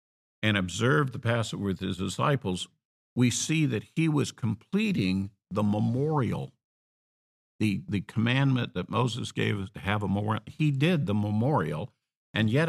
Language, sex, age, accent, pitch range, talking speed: English, male, 50-69, American, 95-130 Hz, 150 wpm